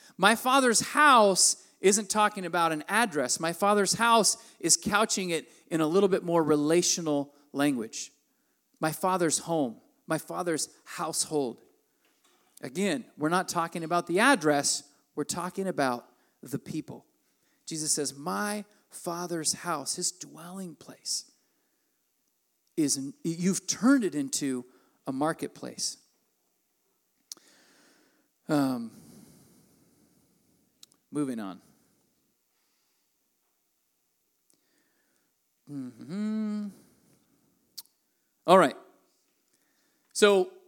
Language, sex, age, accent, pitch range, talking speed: English, male, 40-59, American, 150-210 Hz, 90 wpm